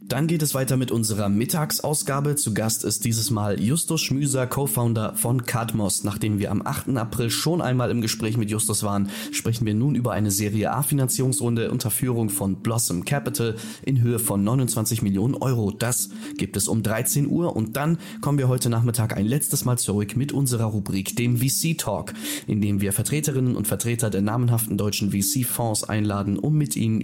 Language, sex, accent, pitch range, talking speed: German, male, German, 105-130 Hz, 185 wpm